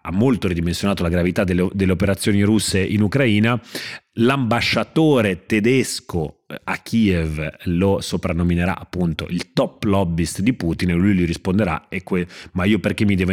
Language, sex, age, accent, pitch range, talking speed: Italian, male, 30-49, native, 85-105 Hz, 150 wpm